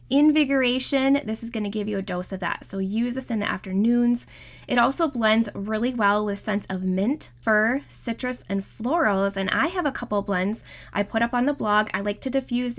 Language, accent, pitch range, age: English, American, 195-245 Hz, 20-39